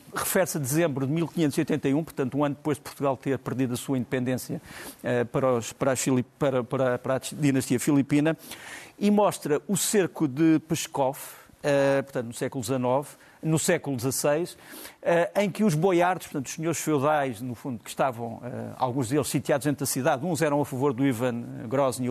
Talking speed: 185 wpm